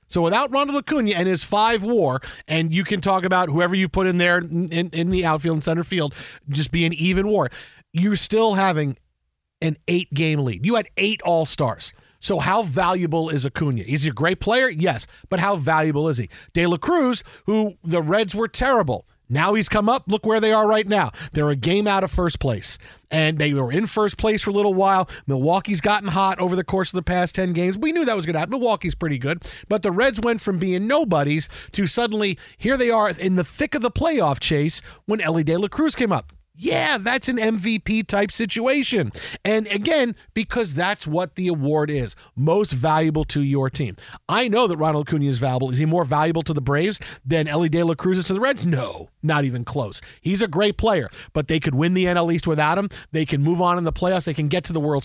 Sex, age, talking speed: male, 40-59, 225 wpm